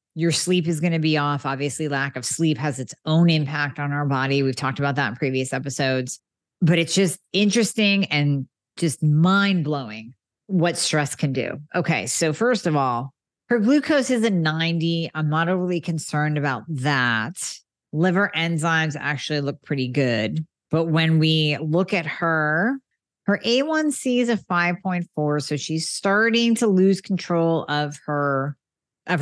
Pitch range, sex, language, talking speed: 145-175 Hz, female, English, 160 wpm